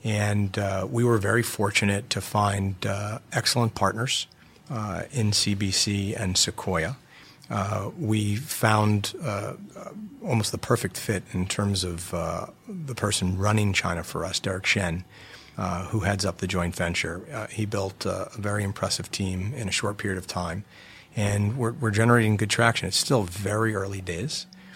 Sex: male